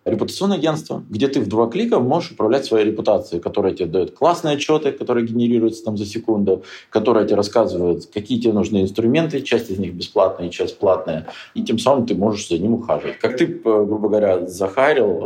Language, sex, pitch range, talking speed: Russian, male, 100-135 Hz, 185 wpm